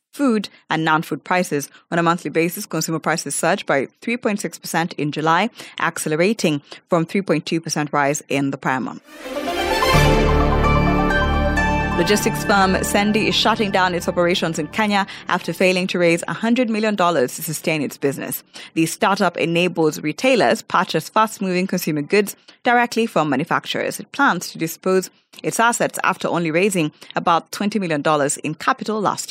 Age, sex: 20-39, female